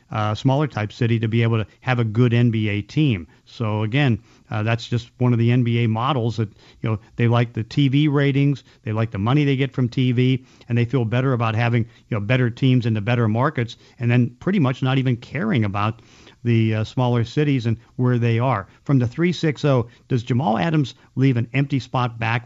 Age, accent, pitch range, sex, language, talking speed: 50-69, American, 115-135 Hz, male, English, 220 wpm